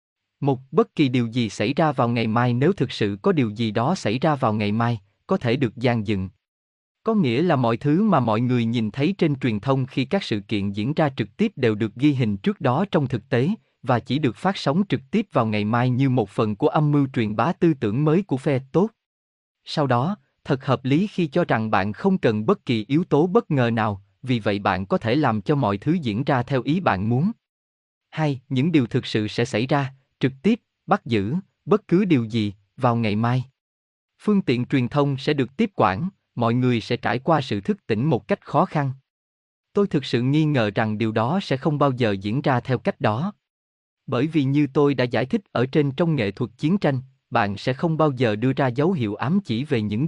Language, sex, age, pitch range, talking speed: Vietnamese, male, 20-39, 110-155 Hz, 235 wpm